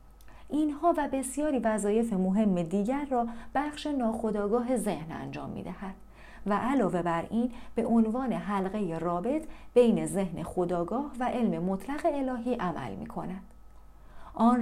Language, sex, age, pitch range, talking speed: Persian, female, 40-59, 190-250 Hz, 125 wpm